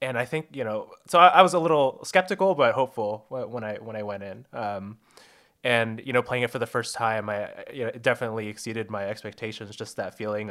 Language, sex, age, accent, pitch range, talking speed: English, male, 20-39, American, 105-125 Hz, 235 wpm